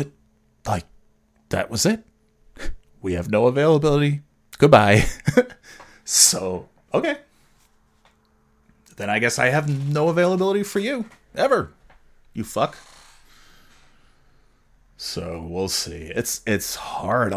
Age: 30-49